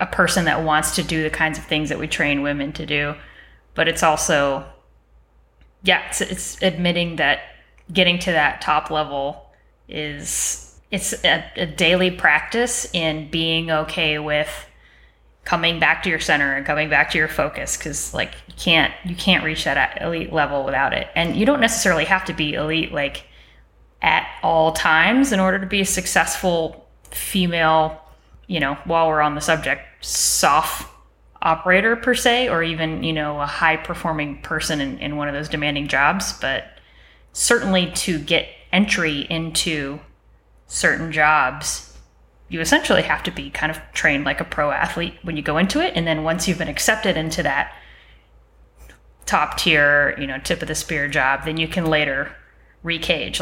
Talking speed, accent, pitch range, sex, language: 170 wpm, American, 150-175 Hz, female, English